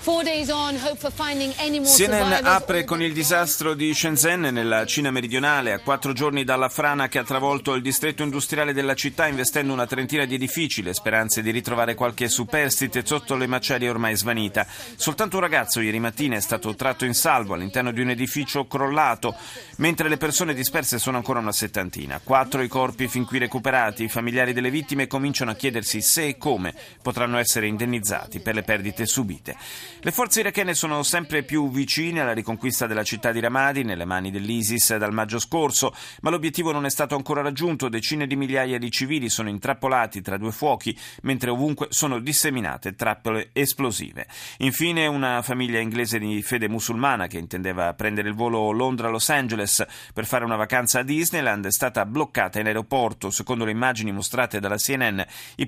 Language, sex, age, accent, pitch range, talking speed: Italian, male, 30-49, native, 115-150 Hz, 170 wpm